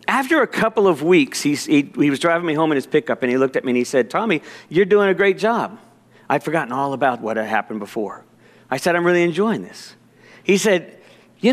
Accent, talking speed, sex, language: American, 240 wpm, male, English